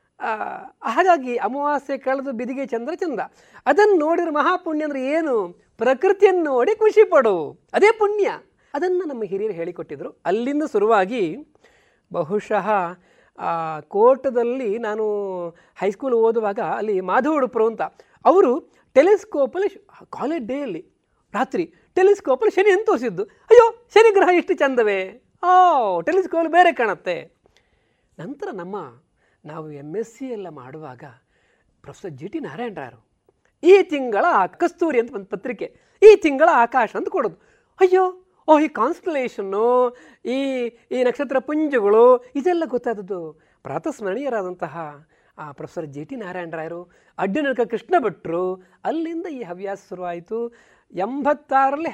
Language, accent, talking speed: Kannada, native, 110 wpm